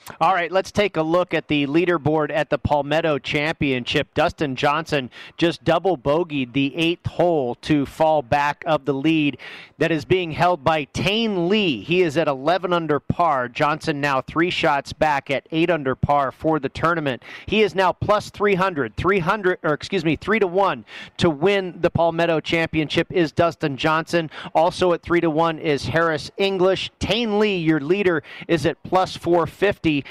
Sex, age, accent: male, 40-59, American